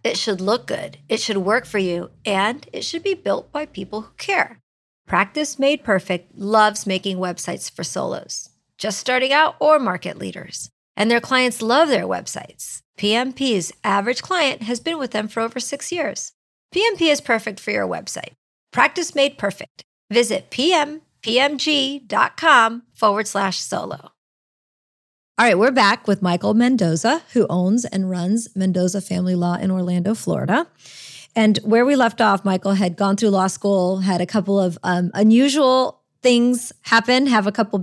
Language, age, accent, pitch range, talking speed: English, 50-69, American, 195-255 Hz, 160 wpm